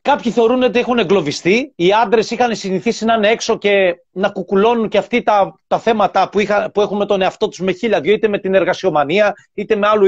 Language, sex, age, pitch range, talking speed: Greek, male, 40-59, 195-240 Hz, 225 wpm